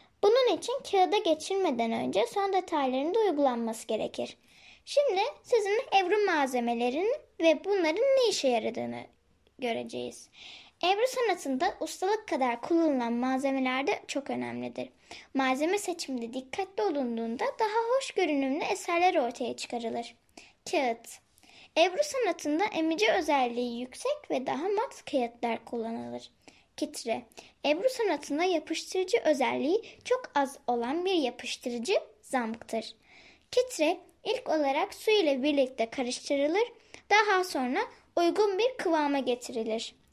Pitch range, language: 255-395 Hz, Turkish